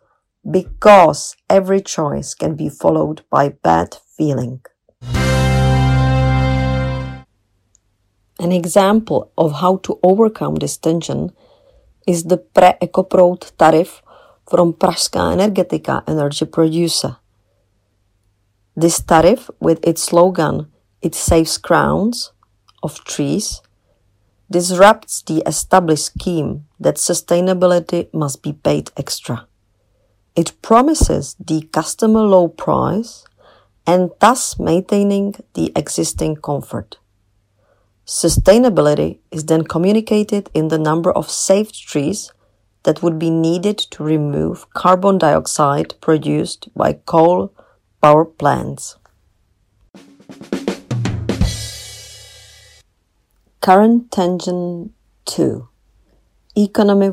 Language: Czech